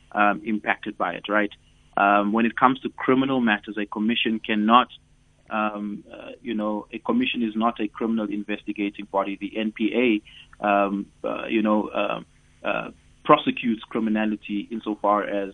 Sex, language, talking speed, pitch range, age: male, English, 150 wpm, 100-115 Hz, 20-39